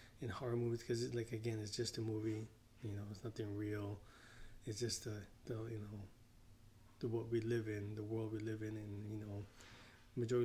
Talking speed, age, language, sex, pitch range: 200 wpm, 20-39, English, male, 110-120 Hz